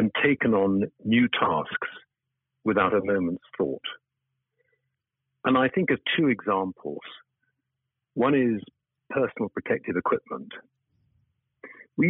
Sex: male